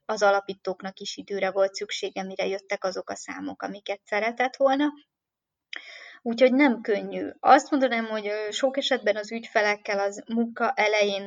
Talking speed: 145 wpm